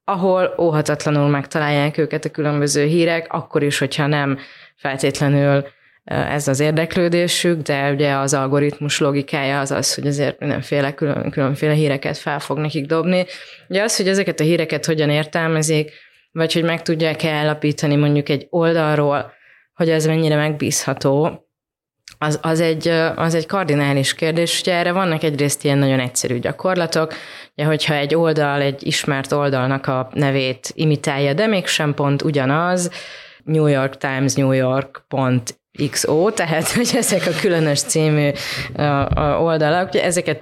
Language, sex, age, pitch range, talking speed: Hungarian, female, 20-39, 140-165 Hz, 140 wpm